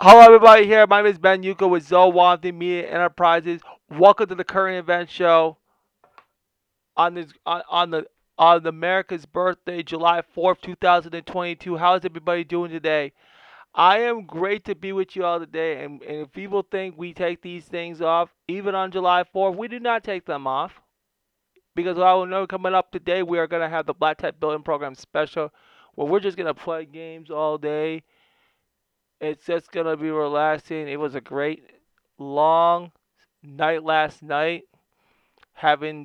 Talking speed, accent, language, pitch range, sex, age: 180 wpm, American, English, 150-180 Hz, male, 20-39